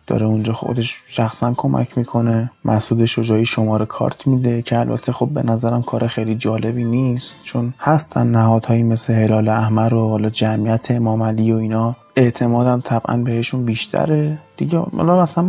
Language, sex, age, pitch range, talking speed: Persian, male, 20-39, 115-140 Hz, 145 wpm